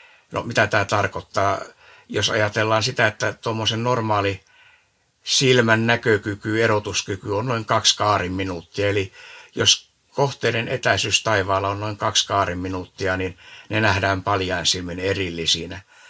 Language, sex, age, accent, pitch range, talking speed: Finnish, male, 60-79, native, 100-120 Hz, 125 wpm